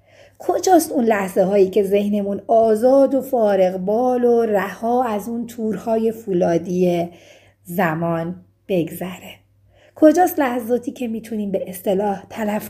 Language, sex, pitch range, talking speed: Persian, female, 185-260 Hz, 120 wpm